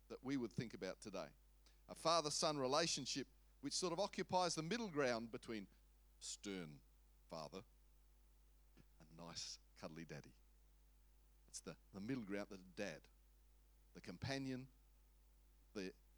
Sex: male